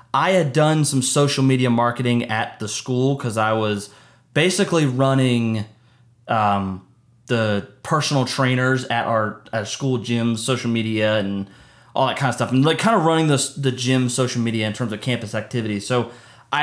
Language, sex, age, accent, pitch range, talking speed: English, male, 20-39, American, 115-140 Hz, 170 wpm